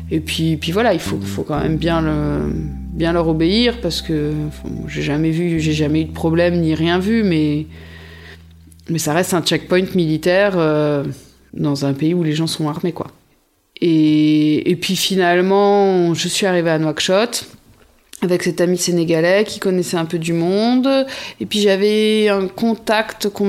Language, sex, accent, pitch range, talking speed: French, female, French, 160-195 Hz, 180 wpm